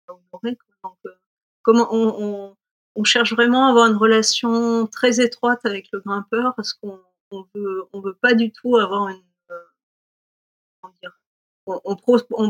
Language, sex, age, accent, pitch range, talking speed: French, female, 40-59, French, 185-220 Hz, 175 wpm